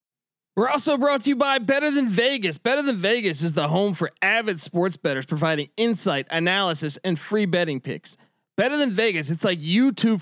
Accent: American